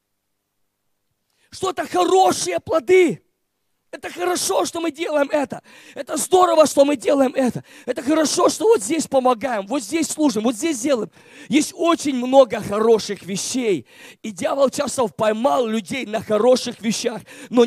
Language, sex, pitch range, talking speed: Russian, male, 205-285 Hz, 145 wpm